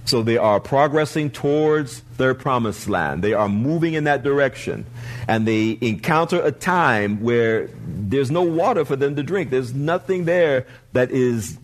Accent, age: American, 50-69